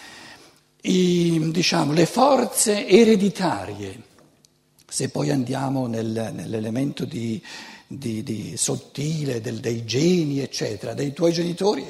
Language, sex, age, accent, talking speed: Italian, male, 60-79, native, 105 wpm